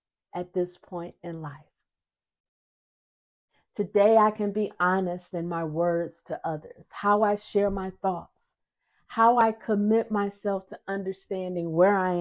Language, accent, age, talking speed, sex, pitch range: English, American, 40-59, 140 wpm, female, 175-220 Hz